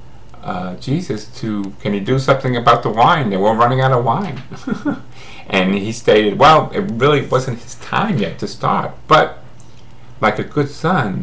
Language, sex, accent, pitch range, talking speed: English, male, American, 100-130 Hz, 175 wpm